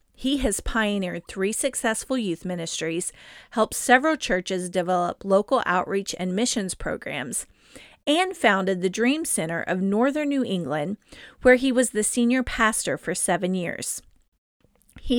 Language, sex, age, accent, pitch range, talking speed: English, female, 40-59, American, 190-250 Hz, 140 wpm